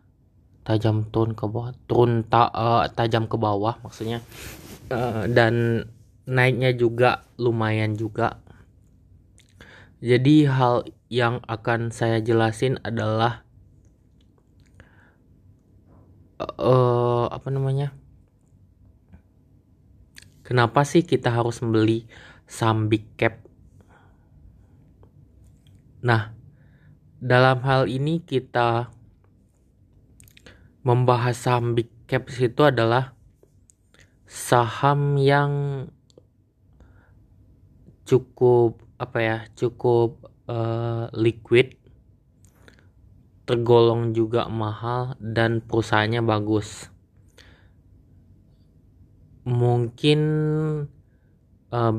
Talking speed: 70 wpm